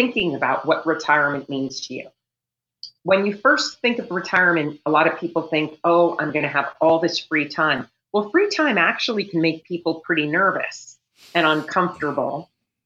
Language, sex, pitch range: English, female, 155-210 Hz